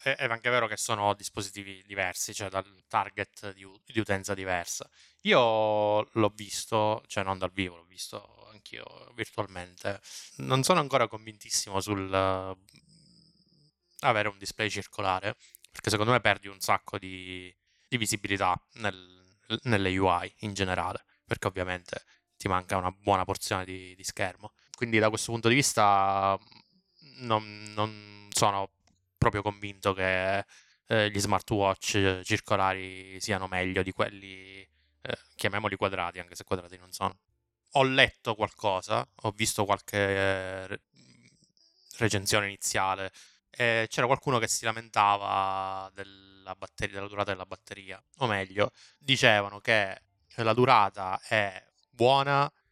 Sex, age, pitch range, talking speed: male, 20-39, 95-110 Hz, 130 wpm